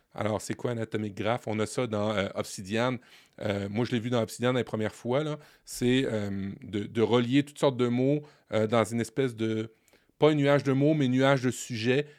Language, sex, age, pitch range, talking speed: French, male, 30-49, 110-140 Hz, 240 wpm